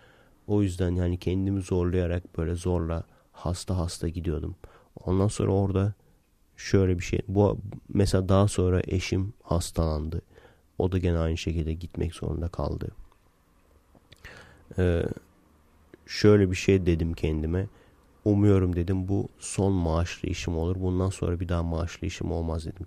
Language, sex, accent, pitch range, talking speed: Turkish, male, native, 85-95 Hz, 135 wpm